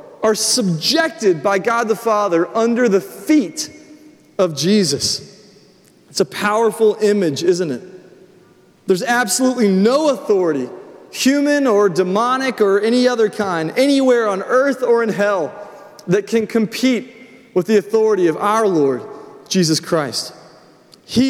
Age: 30-49